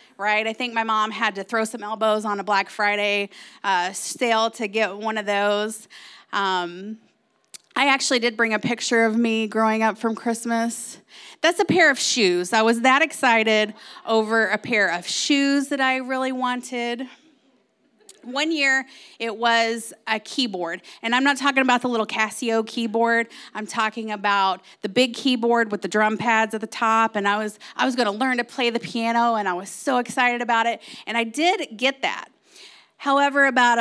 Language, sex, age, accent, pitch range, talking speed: English, female, 30-49, American, 215-260 Hz, 190 wpm